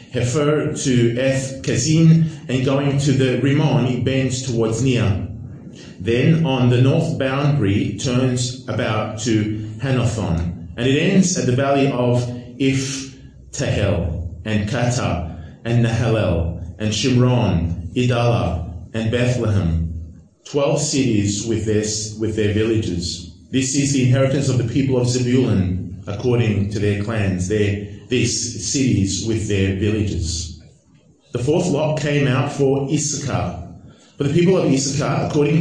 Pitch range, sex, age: 110-145 Hz, male, 30-49